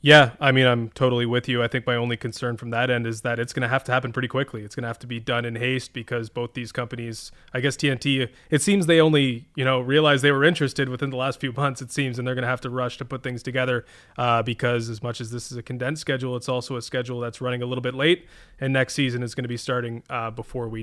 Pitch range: 125-150 Hz